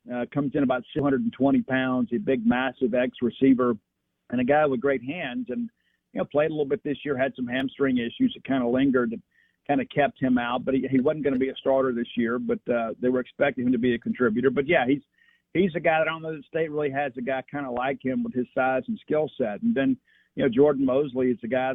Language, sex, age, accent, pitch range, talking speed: English, male, 50-69, American, 125-150 Hz, 265 wpm